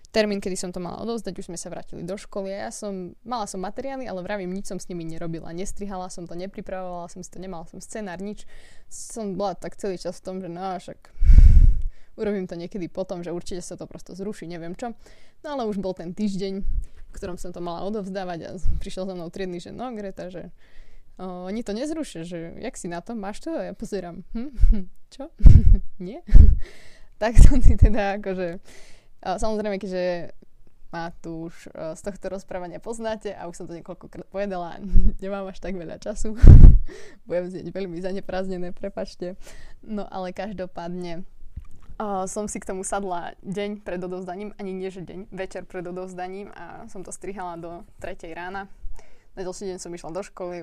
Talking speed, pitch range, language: 185 wpm, 175-200 Hz, Slovak